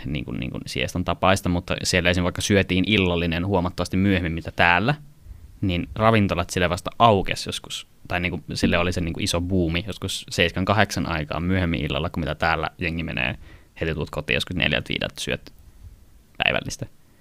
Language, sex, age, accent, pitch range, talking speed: Finnish, male, 20-39, native, 85-100 Hz, 165 wpm